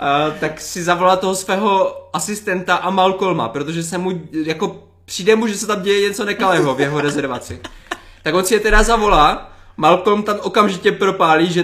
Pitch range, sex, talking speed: 155-215 Hz, male, 180 wpm